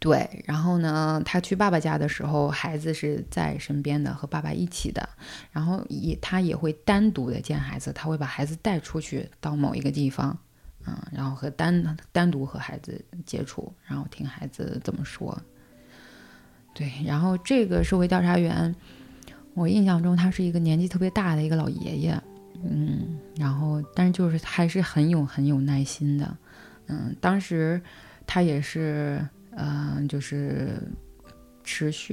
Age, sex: 20-39, female